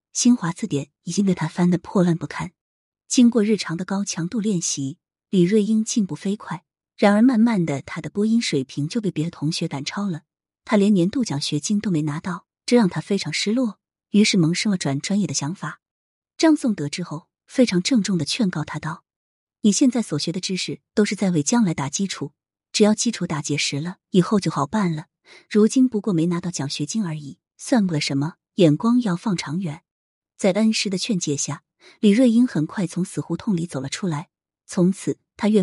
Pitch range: 155-210 Hz